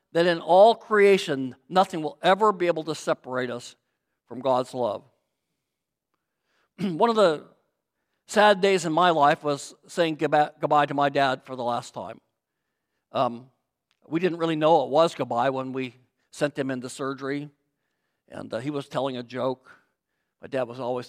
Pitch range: 135-185 Hz